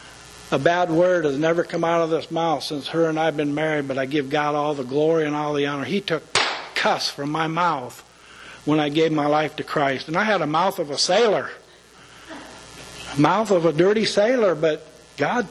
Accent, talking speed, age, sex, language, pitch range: American, 215 wpm, 60-79, male, English, 125-175 Hz